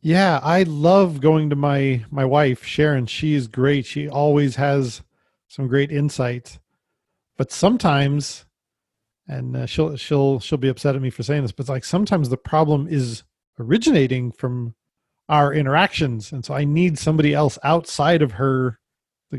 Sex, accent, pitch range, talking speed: male, American, 125-150 Hz, 160 wpm